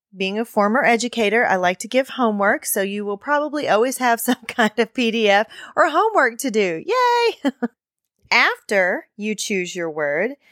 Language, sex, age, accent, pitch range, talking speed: English, female, 30-49, American, 195-255 Hz, 165 wpm